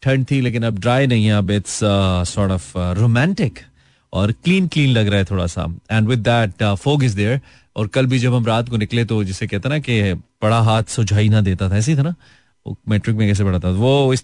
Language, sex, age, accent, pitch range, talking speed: Hindi, male, 30-49, native, 105-155 Hz, 240 wpm